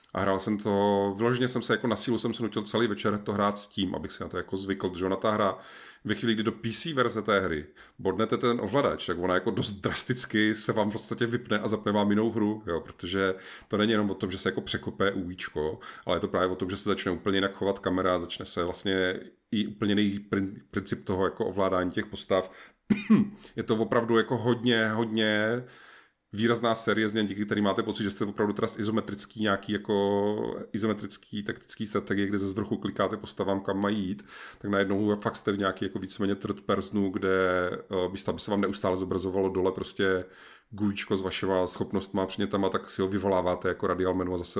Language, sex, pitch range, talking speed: Czech, male, 95-110 Hz, 205 wpm